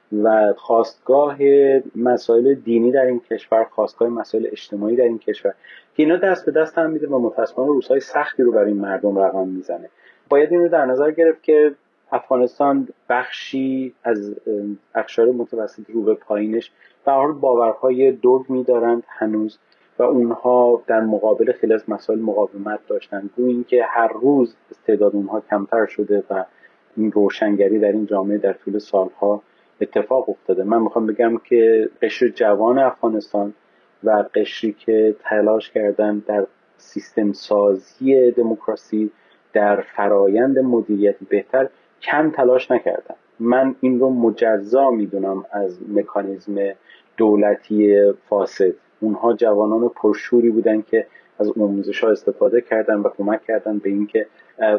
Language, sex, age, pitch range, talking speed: Persian, male, 30-49, 105-130 Hz, 135 wpm